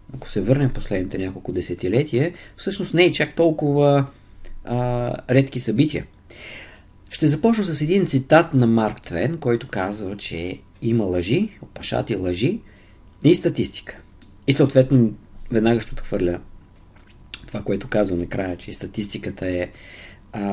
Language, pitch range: Bulgarian, 95-130 Hz